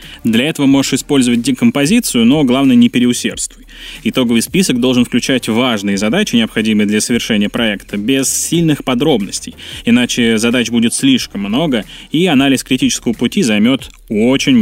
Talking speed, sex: 135 wpm, male